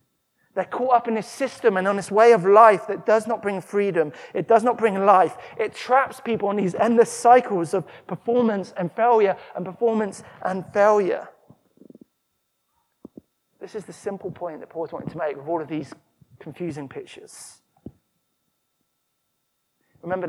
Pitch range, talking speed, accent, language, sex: 170-230 Hz, 160 wpm, British, English, male